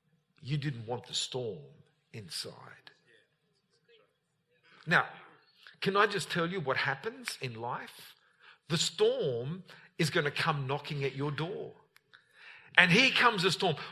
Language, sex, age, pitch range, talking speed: English, male, 50-69, 135-190 Hz, 135 wpm